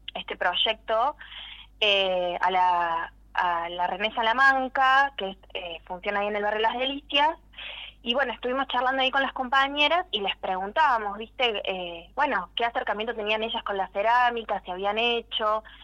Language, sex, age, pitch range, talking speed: Spanish, female, 20-39, 190-235 Hz, 165 wpm